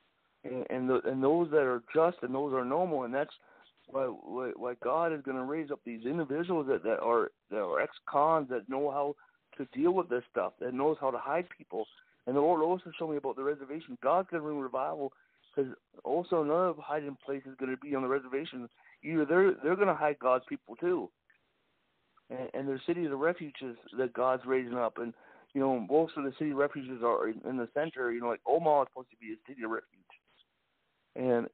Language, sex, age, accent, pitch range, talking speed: English, male, 60-79, American, 130-160 Hz, 220 wpm